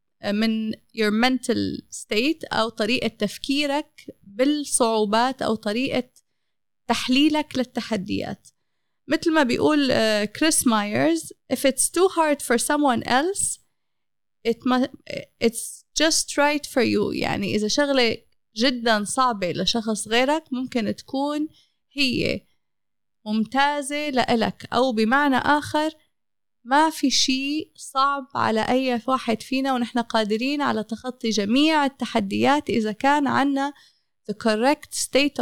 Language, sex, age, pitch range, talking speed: Arabic, female, 30-49, 225-285 Hz, 115 wpm